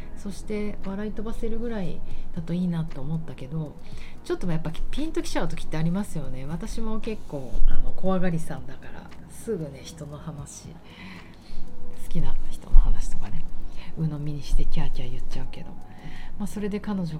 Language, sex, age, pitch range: Japanese, female, 40-59, 135-195 Hz